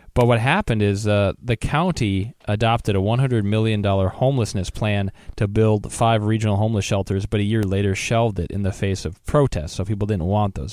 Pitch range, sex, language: 95-120 Hz, male, English